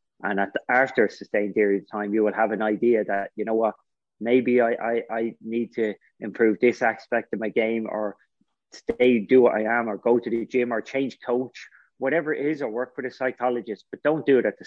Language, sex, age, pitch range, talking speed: English, male, 30-49, 110-130 Hz, 235 wpm